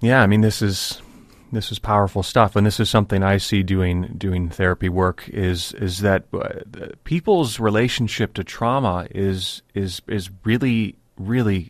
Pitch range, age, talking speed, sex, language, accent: 90-105 Hz, 30-49, 165 wpm, male, English, American